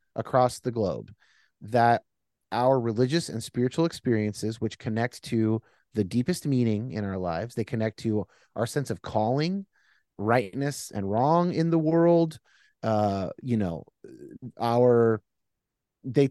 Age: 30-49